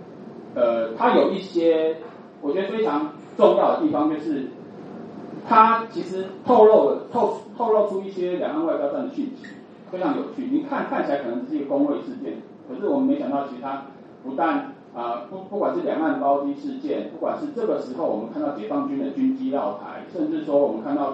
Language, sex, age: Chinese, male, 30-49